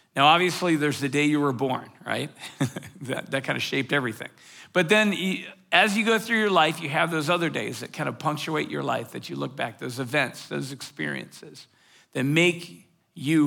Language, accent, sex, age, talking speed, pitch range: English, American, male, 50-69, 195 wpm, 135-170 Hz